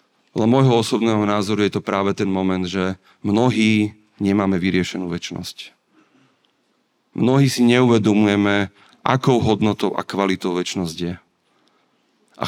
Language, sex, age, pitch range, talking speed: Slovak, male, 40-59, 95-115 Hz, 115 wpm